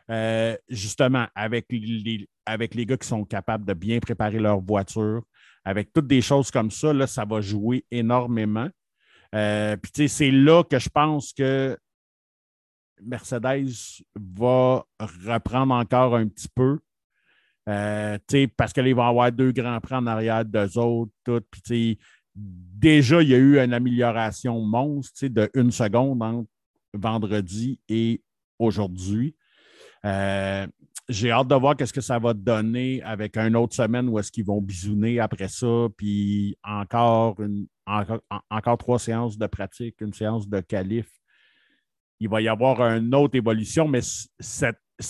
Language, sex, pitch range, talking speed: French, male, 105-130 Hz, 150 wpm